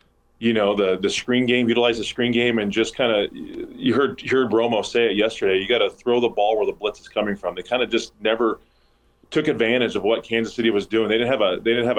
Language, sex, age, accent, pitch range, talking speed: English, male, 20-39, American, 100-115 Hz, 270 wpm